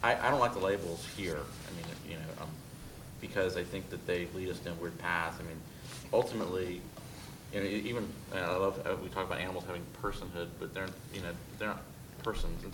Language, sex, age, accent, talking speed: English, male, 30-49, American, 215 wpm